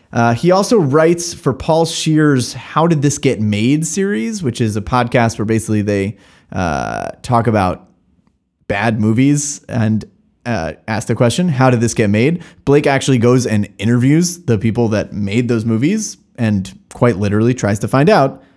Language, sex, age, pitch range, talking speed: English, male, 30-49, 105-135 Hz, 170 wpm